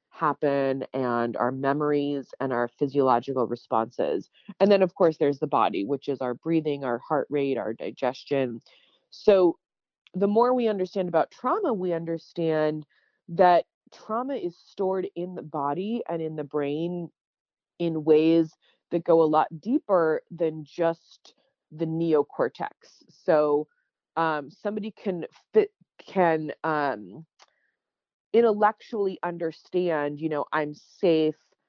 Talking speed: 130 wpm